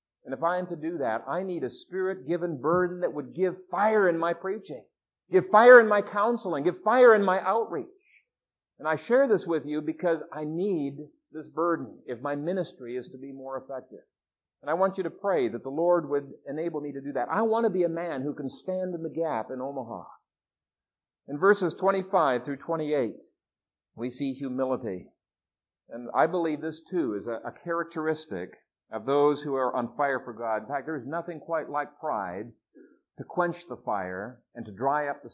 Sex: male